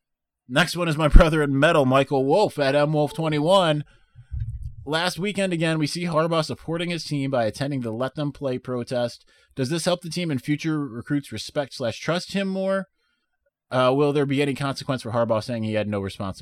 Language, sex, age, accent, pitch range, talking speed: English, male, 20-39, American, 95-135 Hz, 205 wpm